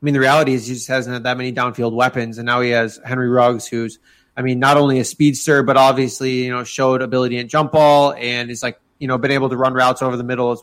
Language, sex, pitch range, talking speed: English, male, 125-145 Hz, 275 wpm